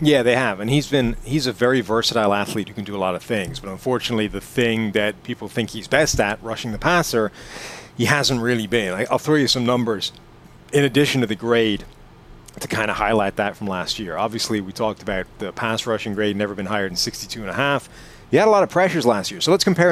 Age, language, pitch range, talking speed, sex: 30-49, English, 110-140 Hz, 240 wpm, male